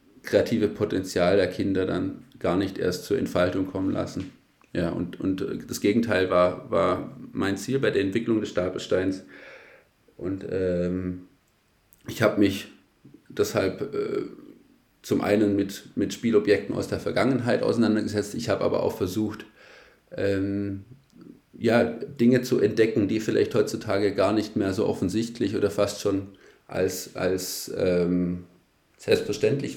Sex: male